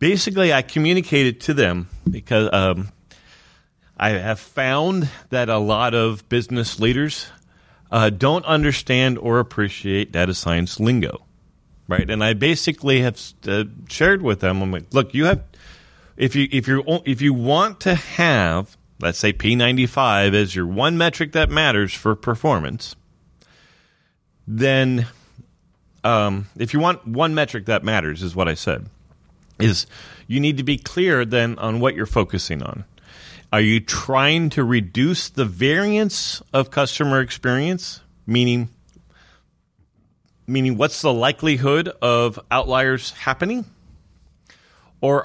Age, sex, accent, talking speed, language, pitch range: 40-59, male, American, 135 wpm, English, 105-140 Hz